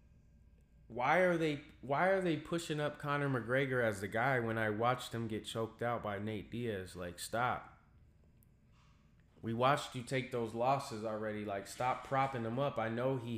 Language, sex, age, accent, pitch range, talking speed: English, male, 20-39, American, 105-140 Hz, 180 wpm